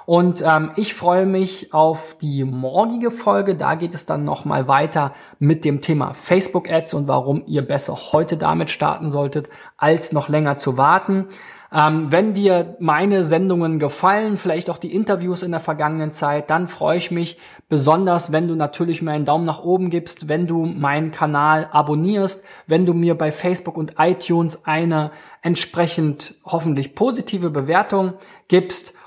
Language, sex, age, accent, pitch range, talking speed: German, male, 20-39, German, 150-180 Hz, 160 wpm